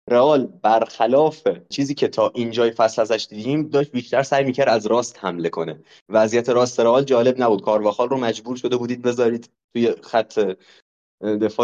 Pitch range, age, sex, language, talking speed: 110-130 Hz, 20-39, male, Persian, 155 wpm